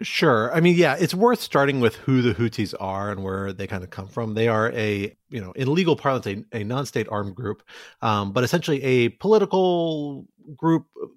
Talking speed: 205 wpm